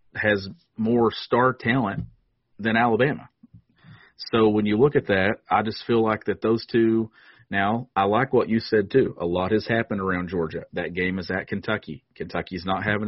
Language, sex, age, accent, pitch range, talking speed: English, male, 40-59, American, 95-110 Hz, 185 wpm